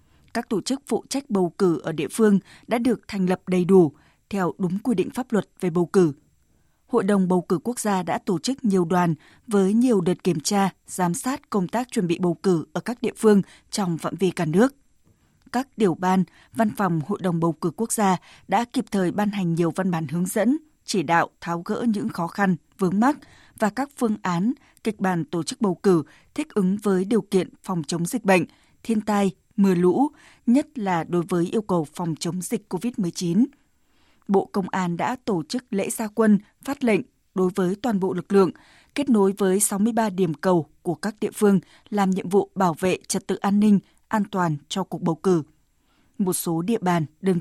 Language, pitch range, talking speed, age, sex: Vietnamese, 180-220 Hz, 215 wpm, 20-39, female